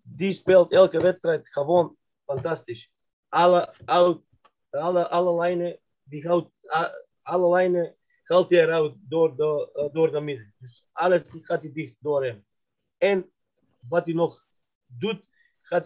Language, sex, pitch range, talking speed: Dutch, male, 155-195 Hz, 135 wpm